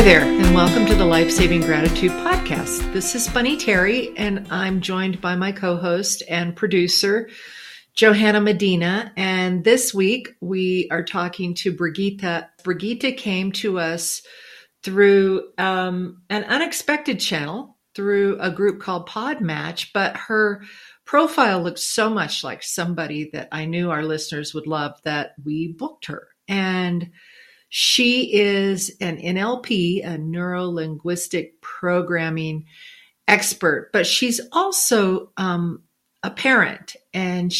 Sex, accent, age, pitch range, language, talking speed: female, American, 50-69, 165-200 Hz, English, 130 wpm